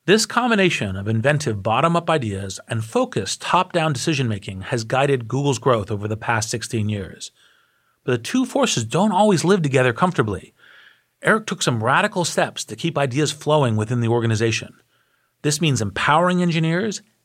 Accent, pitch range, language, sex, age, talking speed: American, 115-160 Hz, English, male, 40-59, 155 wpm